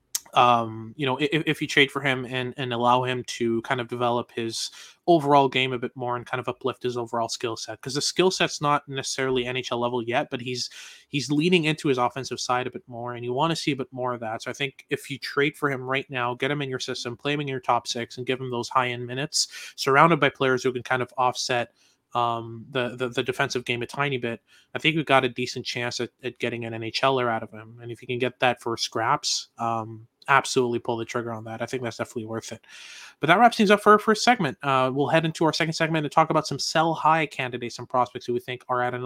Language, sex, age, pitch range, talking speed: English, male, 20-39, 125-145 Hz, 265 wpm